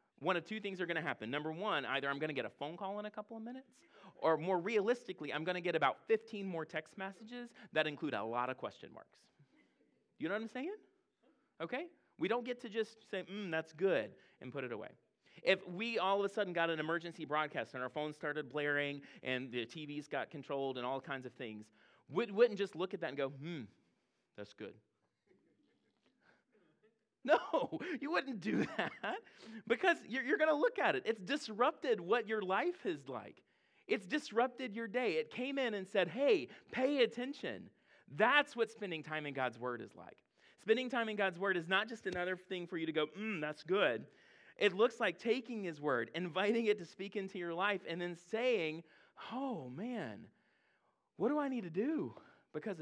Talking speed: 205 wpm